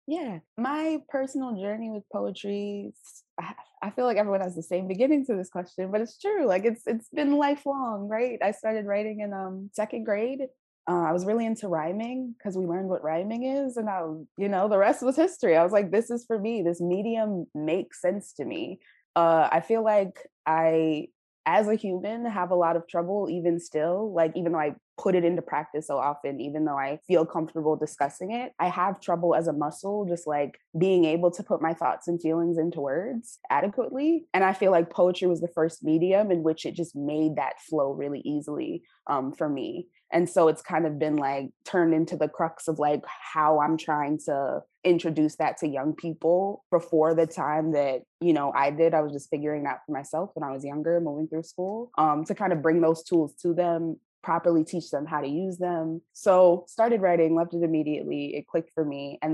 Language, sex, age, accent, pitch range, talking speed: English, female, 20-39, American, 155-200 Hz, 210 wpm